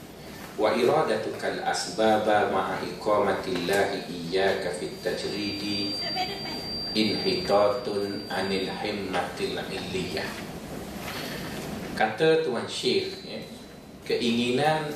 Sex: male